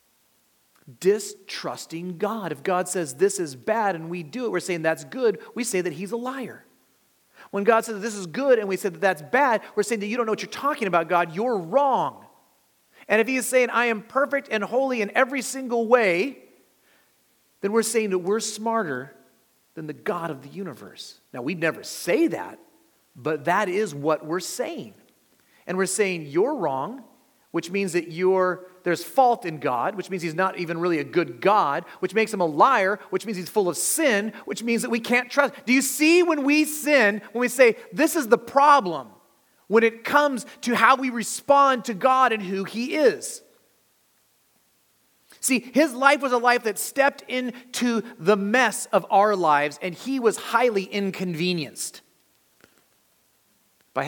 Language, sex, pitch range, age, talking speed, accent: English, male, 175-250 Hz, 40-59, 190 wpm, American